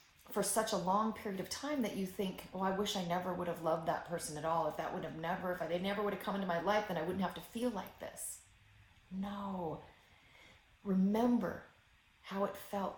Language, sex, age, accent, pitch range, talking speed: English, female, 40-59, American, 165-205 Hz, 225 wpm